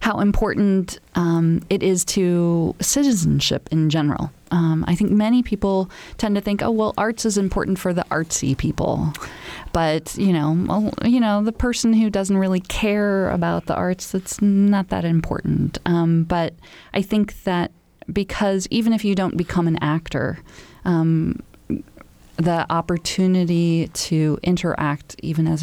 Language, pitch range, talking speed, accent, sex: English, 160-195 Hz, 150 wpm, American, female